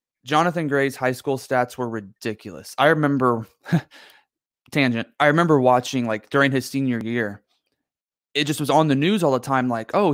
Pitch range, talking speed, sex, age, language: 115-140 Hz, 170 wpm, male, 20-39, English